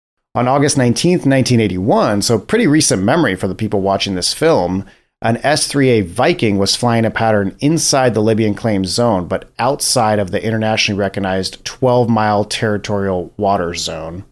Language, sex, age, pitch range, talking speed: English, male, 30-49, 100-125 Hz, 150 wpm